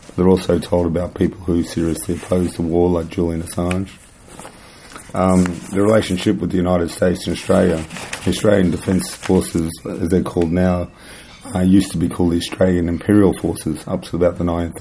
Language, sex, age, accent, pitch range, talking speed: English, male, 30-49, Australian, 85-95 Hz, 175 wpm